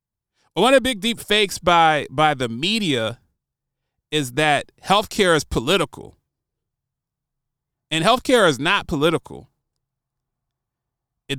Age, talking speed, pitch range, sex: 30-49, 110 wpm, 140-200 Hz, male